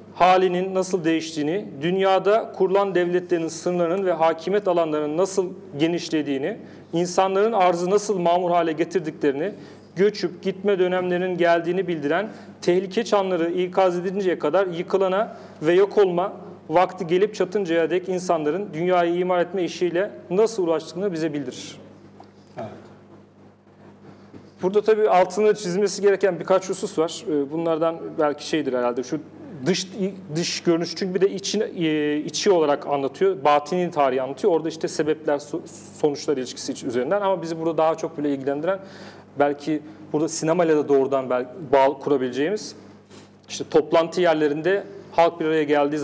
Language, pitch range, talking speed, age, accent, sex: Turkish, 150-190 Hz, 130 wpm, 40-59, native, male